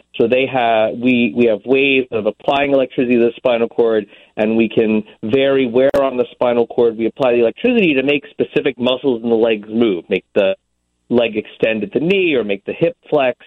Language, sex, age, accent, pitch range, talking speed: English, male, 40-59, American, 115-140 Hz, 210 wpm